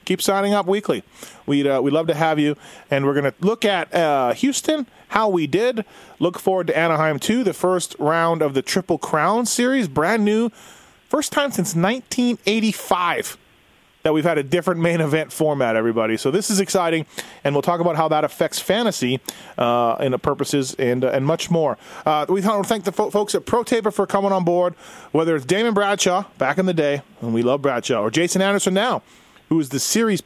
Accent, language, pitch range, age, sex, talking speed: American, English, 150-195 Hz, 30-49, male, 210 wpm